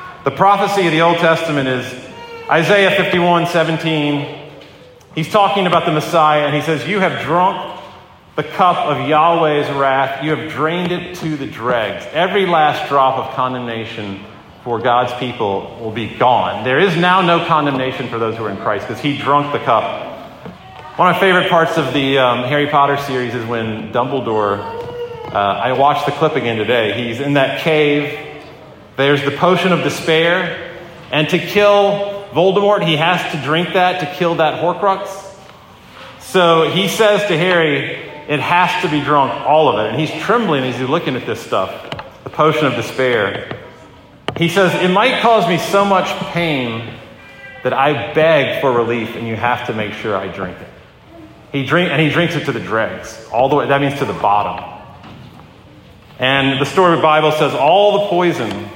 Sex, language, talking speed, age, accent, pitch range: male, English, 185 wpm, 40-59, American, 130-175 Hz